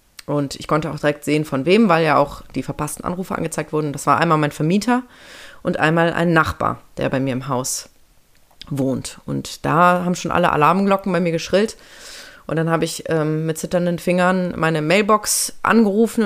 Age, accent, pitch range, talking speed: 30-49, German, 155-190 Hz, 190 wpm